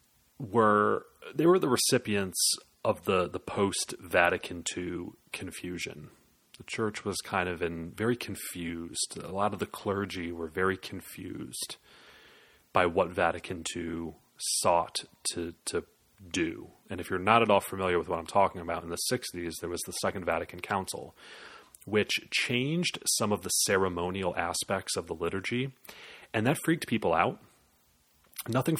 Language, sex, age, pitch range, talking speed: English, male, 30-49, 90-125 Hz, 150 wpm